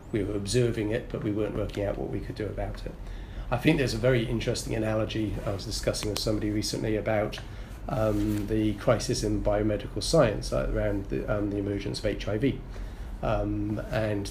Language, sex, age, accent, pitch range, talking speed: English, male, 30-49, British, 100-115 Hz, 185 wpm